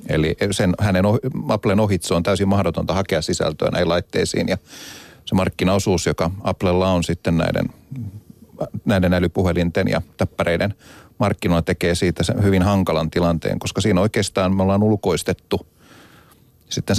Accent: native